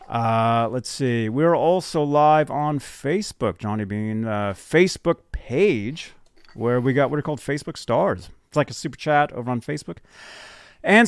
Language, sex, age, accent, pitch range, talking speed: English, male, 30-49, American, 120-190 Hz, 160 wpm